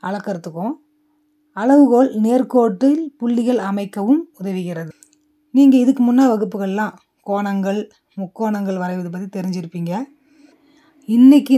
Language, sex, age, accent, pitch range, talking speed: Tamil, female, 20-39, native, 195-285 Hz, 85 wpm